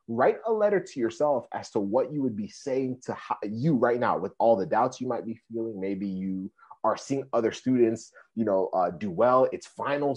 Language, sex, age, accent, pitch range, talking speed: English, male, 30-49, American, 115-155 Hz, 220 wpm